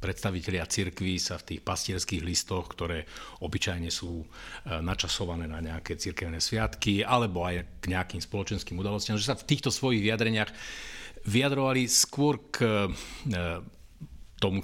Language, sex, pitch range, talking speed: Slovak, male, 85-110 Hz, 125 wpm